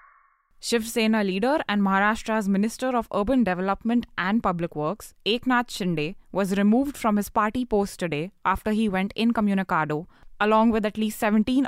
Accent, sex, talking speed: Indian, female, 155 wpm